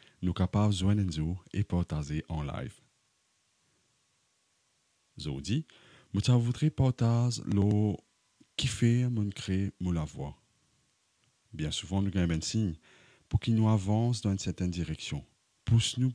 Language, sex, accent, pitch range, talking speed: English, male, French, 90-120 Hz, 140 wpm